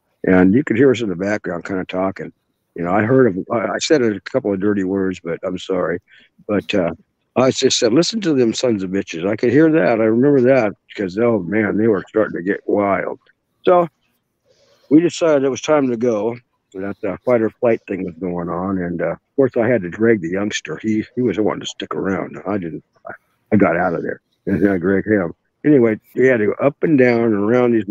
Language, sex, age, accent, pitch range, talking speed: English, male, 60-79, American, 100-130 Hz, 235 wpm